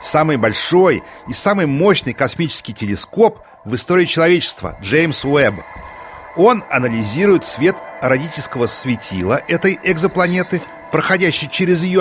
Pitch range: 140-200 Hz